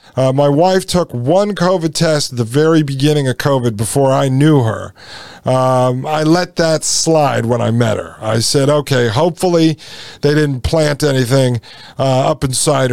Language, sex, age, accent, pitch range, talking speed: English, male, 50-69, American, 130-160 Hz, 170 wpm